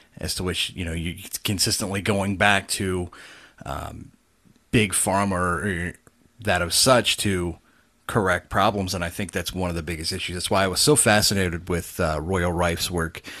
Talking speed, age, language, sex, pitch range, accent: 175 wpm, 30-49, English, male, 85-100 Hz, American